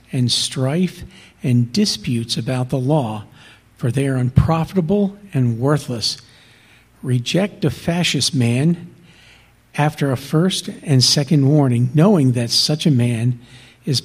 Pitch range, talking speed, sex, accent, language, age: 120-160 Hz, 125 wpm, male, American, English, 50-69